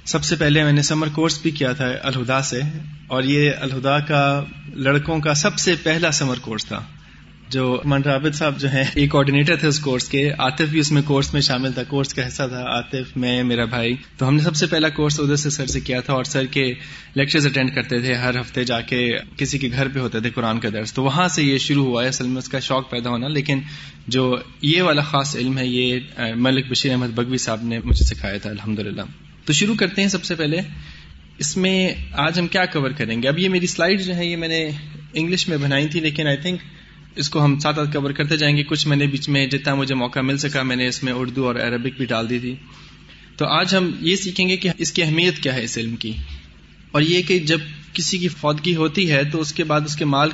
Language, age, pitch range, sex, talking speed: Urdu, 20-39, 125-155 Hz, male, 245 wpm